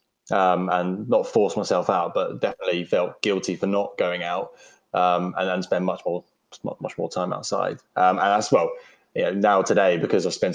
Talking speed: 200 wpm